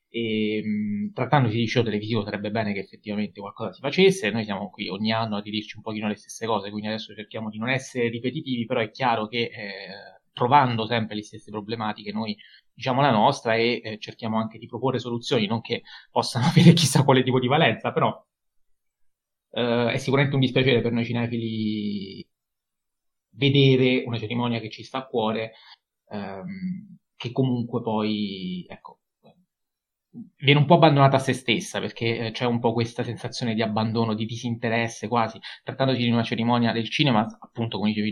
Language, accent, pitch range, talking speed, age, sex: Italian, native, 105-125 Hz, 175 wpm, 20-39, male